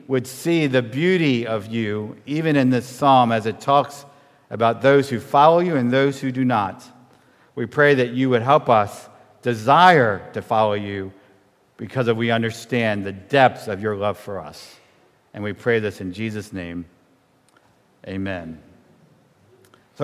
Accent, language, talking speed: American, English, 160 wpm